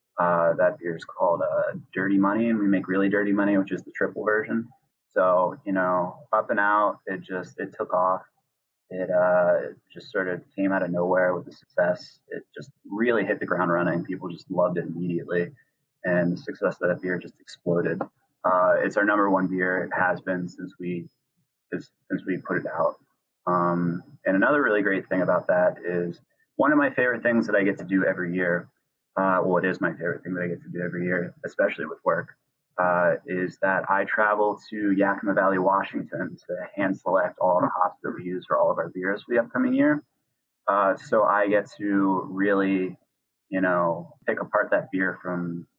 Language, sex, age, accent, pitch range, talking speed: English, male, 30-49, American, 90-100 Hz, 205 wpm